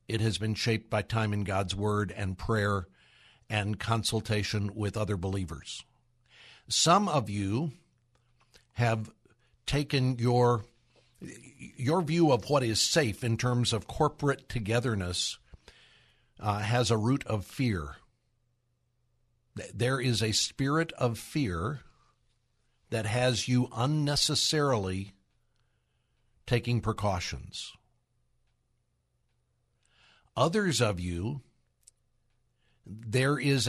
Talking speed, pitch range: 100 wpm, 105-135 Hz